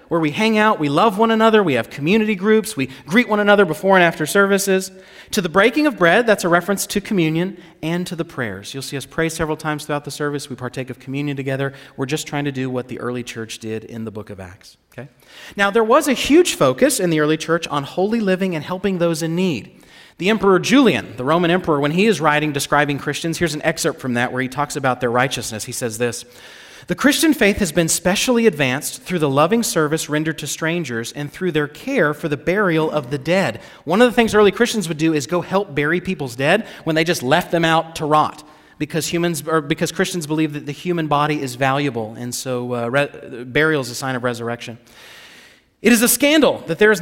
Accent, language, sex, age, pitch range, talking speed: American, English, male, 30-49, 145-215 Hz, 235 wpm